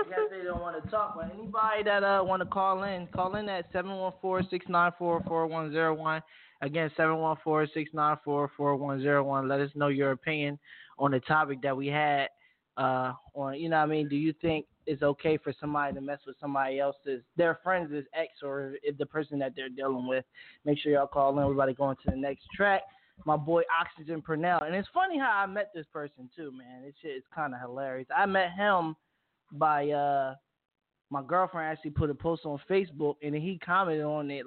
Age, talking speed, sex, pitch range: 10-29, 195 wpm, male, 140-180 Hz